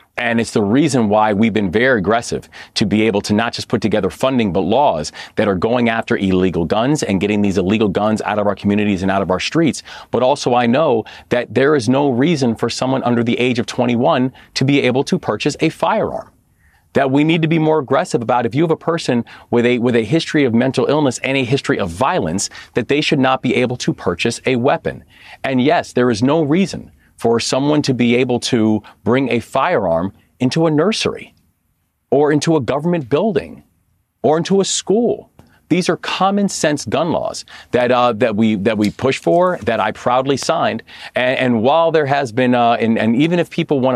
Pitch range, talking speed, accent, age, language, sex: 110-145 Hz, 215 wpm, American, 40-59, English, male